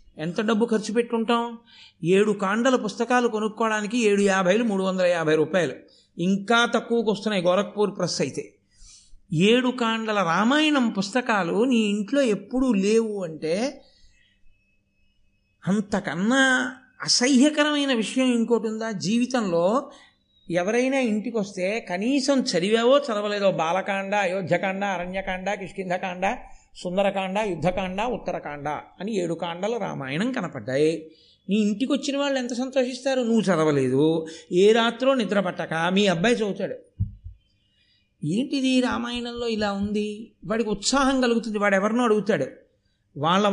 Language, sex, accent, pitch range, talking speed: Telugu, male, native, 175-235 Hz, 110 wpm